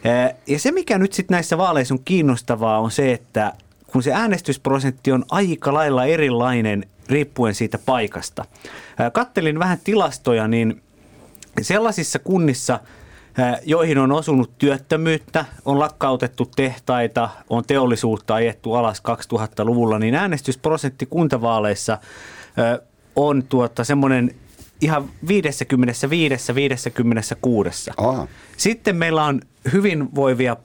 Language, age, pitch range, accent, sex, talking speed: Finnish, 30-49, 110-140 Hz, native, male, 105 wpm